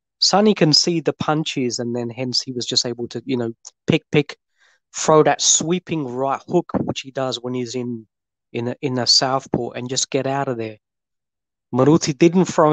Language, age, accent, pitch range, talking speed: English, 20-39, British, 120-150 Hz, 200 wpm